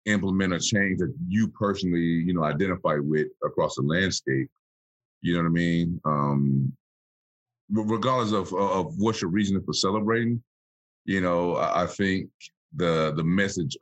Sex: male